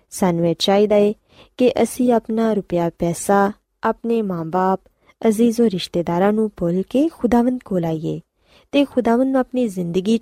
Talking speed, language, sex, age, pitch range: 130 wpm, Punjabi, female, 20-39, 175-235 Hz